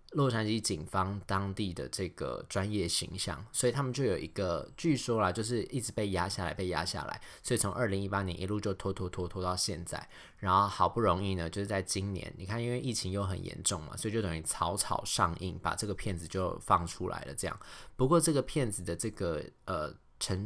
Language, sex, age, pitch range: Chinese, male, 20-39, 90-115 Hz